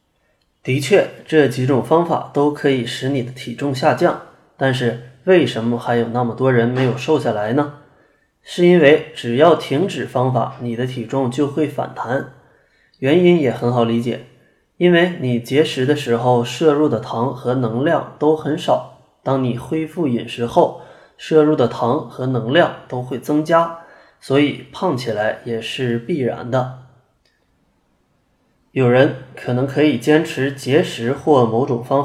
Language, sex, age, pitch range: Chinese, male, 20-39, 120-150 Hz